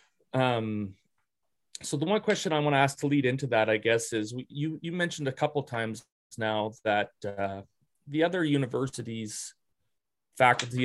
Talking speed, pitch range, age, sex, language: 165 wpm, 115-150 Hz, 30-49, male, English